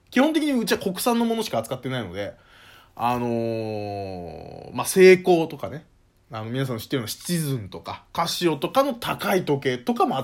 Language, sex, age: Japanese, male, 20-39